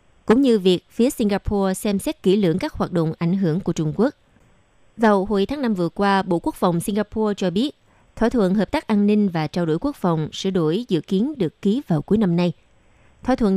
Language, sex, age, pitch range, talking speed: Vietnamese, female, 20-39, 170-225 Hz, 230 wpm